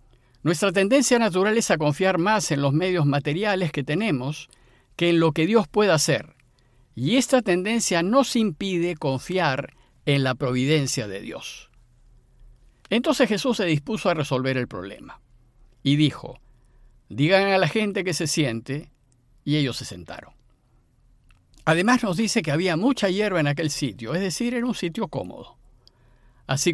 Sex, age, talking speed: male, 50-69, 155 wpm